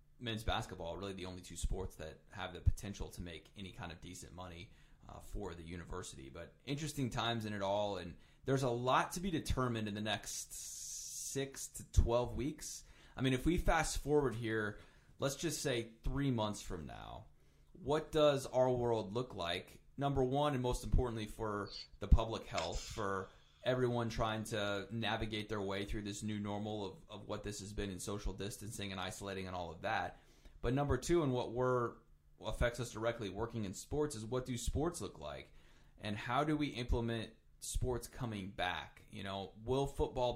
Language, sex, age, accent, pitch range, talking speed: English, male, 30-49, American, 95-125 Hz, 190 wpm